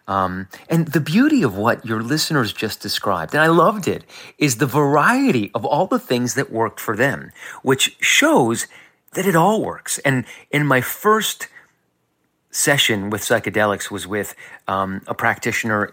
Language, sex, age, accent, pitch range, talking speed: English, male, 30-49, American, 105-145 Hz, 160 wpm